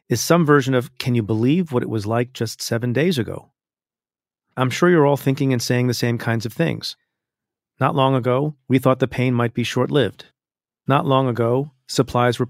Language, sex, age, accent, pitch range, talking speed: English, male, 40-59, American, 125-145 Hz, 200 wpm